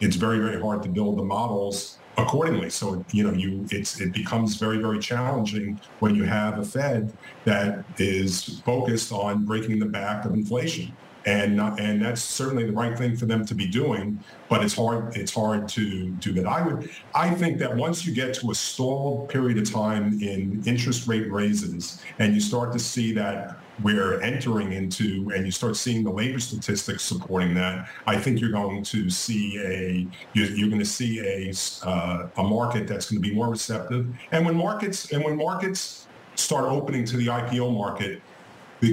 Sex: male